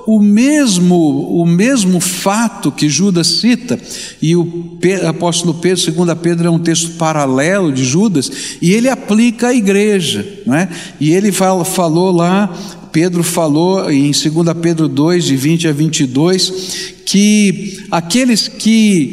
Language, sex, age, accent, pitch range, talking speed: Portuguese, male, 60-79, Brazilian, 170-225 Hz, 140 wpm